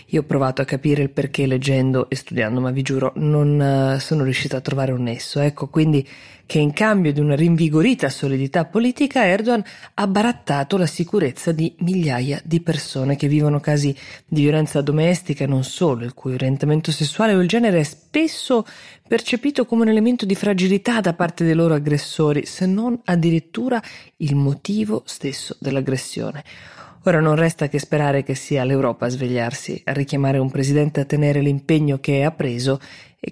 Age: 20-39